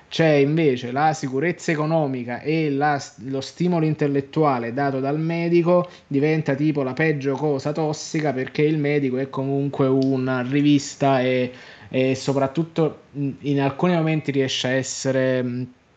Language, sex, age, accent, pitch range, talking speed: Italian, male, 20-39, native, 135-160 Hz, 130 wpm